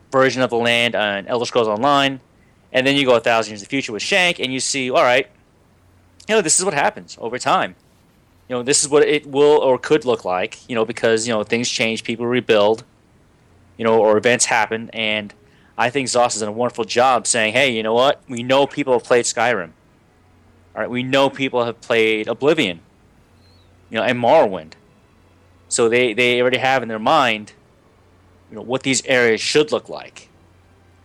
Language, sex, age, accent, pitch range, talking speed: English, male, 30-49, American, 100-130 Hz, 205 wpm